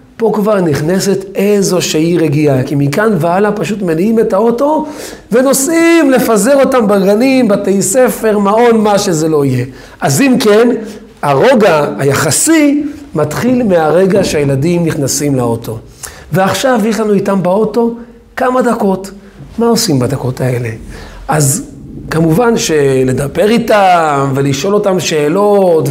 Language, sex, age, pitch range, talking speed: Hebrew, male, 40-59, 155-215 Hz, 120 wpm